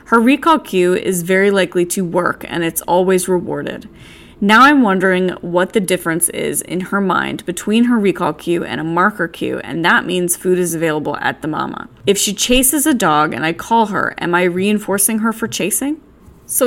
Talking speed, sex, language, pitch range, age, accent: 200 wpm, female, English, 165-205 Hz, 20-39, American